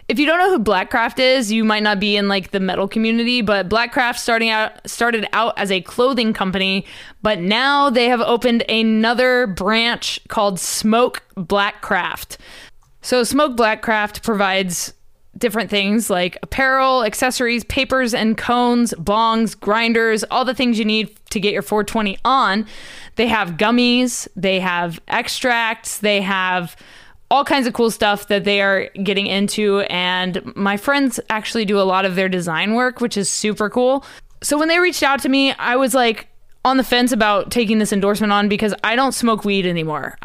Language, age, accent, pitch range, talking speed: English, 20-39, American, 200-240 Hz, 175 wpm